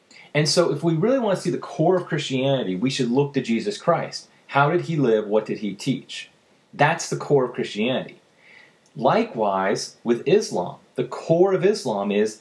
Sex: male